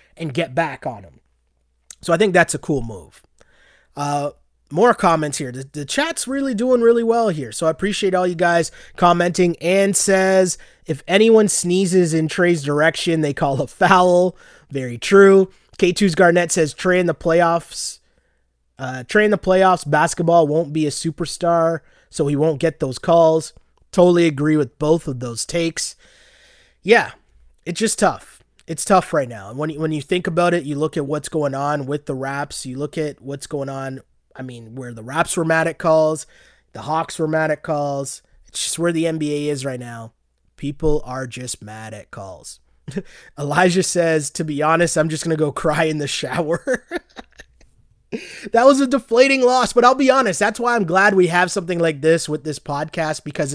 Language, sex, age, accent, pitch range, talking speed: English, male, 20-39, American, 145-180 Hz, 190 wpm